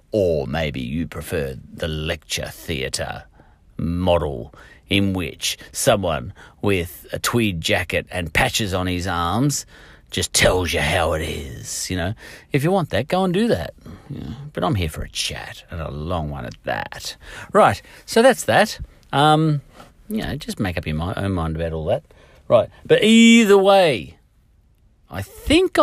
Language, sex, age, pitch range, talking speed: English, male, 40-59, 85-120 Hz, 165 wpm